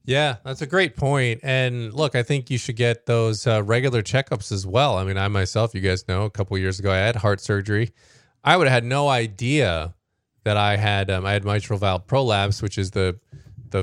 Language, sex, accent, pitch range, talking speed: English, male, American, 95-120 Hz, 230 wpm